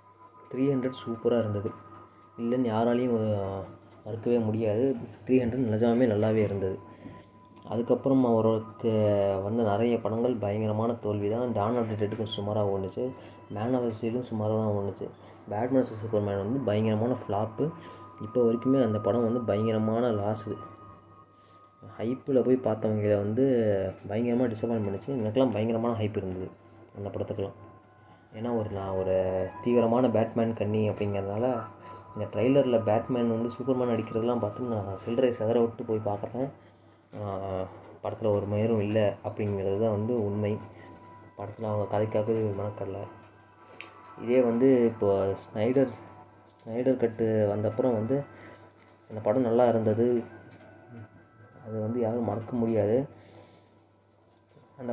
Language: Tamil